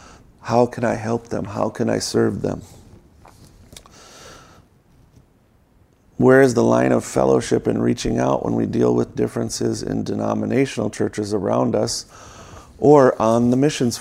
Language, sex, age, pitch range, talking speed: English, male, 40-59, 105-120 Hz, 140 wpm